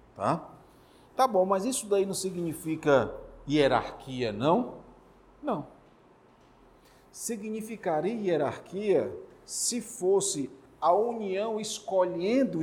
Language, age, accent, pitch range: Portuguese, 50-69, Brazilian, 150-210 Hz